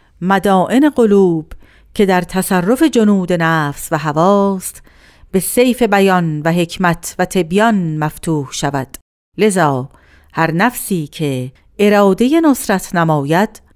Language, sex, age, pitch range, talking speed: Persian, female, 50-69, 150-215 Hz, 110 wpm